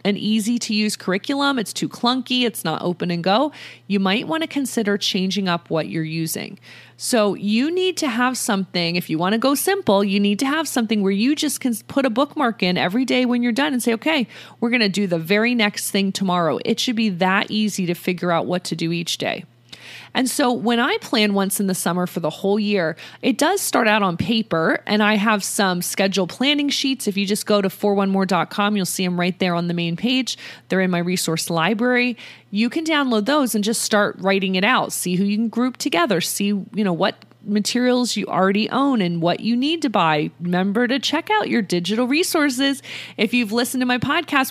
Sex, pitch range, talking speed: female, 190-250 Hz, 225 wpm